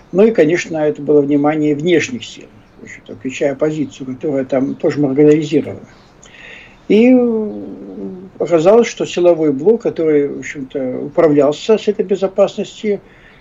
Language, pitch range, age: Russian, 145-195 Hz, 60-79